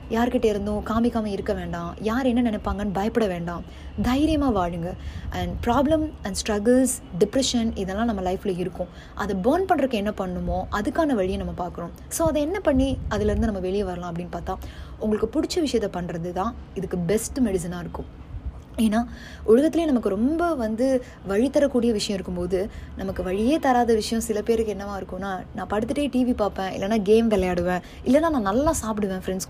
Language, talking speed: Tamil, 155 wpm